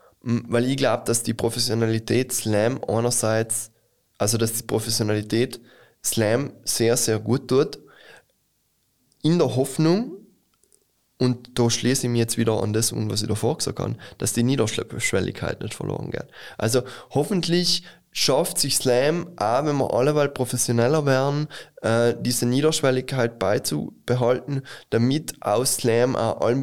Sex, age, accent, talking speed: male, 20-39, German, 135 wpm